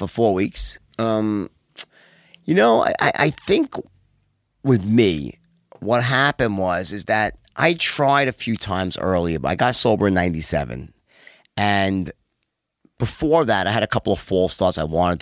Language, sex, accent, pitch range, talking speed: English, male, American, 95-135 Hz, 160 wpm